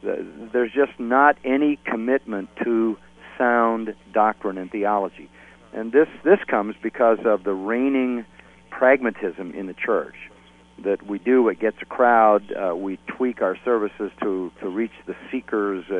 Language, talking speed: English, 145 wpm